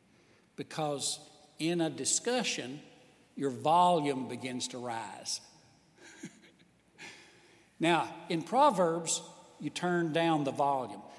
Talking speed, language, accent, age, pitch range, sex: 90 wpm, English, American, 60-79, 170-265 Hz, male